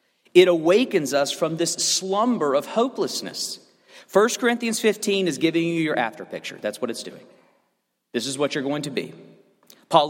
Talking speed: 170 wpm